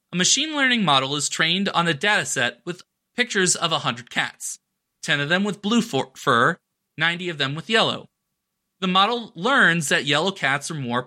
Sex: male